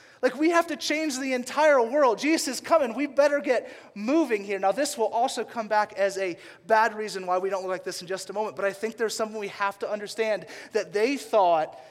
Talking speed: 240 wpm